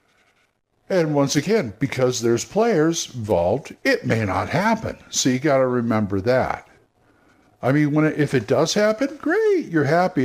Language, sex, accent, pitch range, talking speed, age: English, male, American, 115-175 Hz, 165 wpm, 60-79